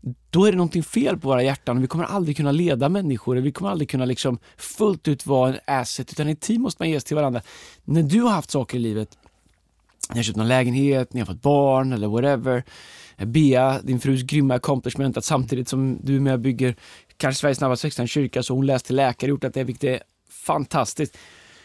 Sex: male